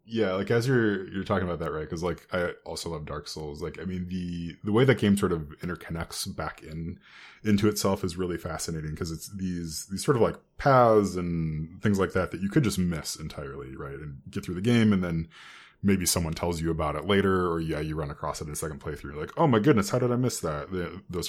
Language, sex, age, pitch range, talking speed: English, male, 20-39, 85-105 Hz, 250 wpm